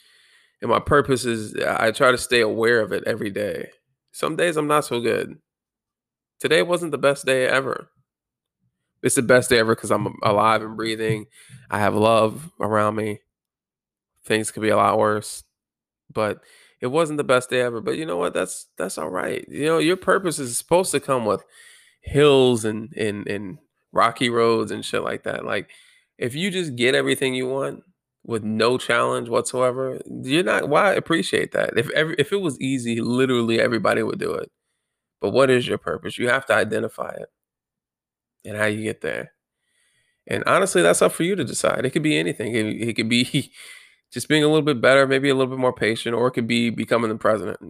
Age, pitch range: 20-39, 110-135 Hz